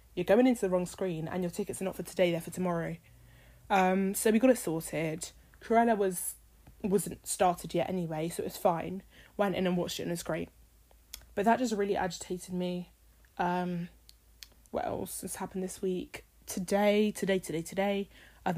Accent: British